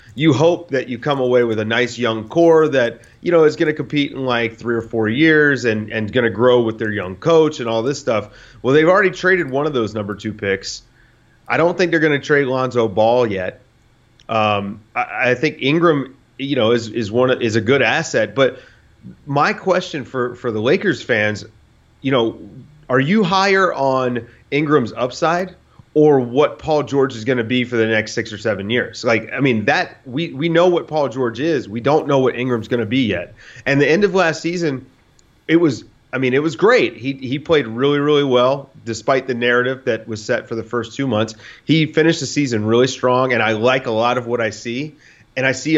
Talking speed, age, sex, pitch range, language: 225 wpm, 30-49, male, 115-150 Hz, English